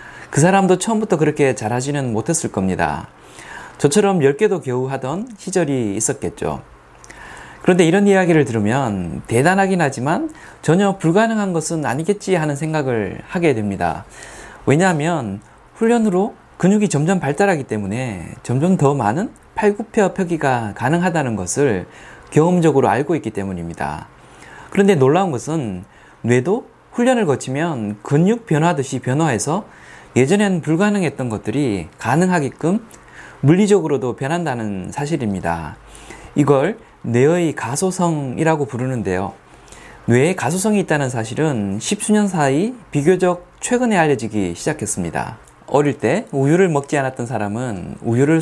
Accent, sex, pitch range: native, male, 115-185 Hz